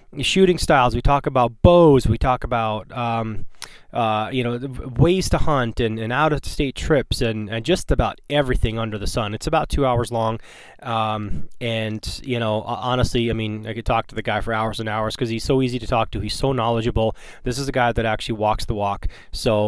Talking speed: 215 wpm